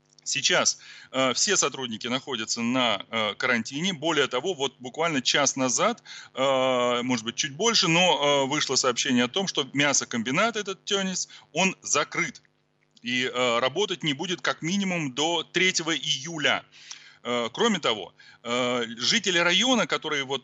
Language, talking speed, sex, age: Russian, 140 wpm, male, 30-49